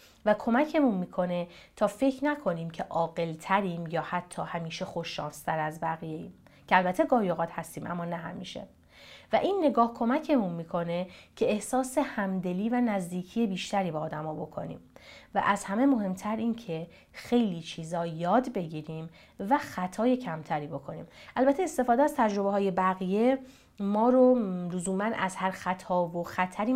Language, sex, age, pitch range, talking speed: Persian, female, 30-49, 170-240 Hz, 140 wpm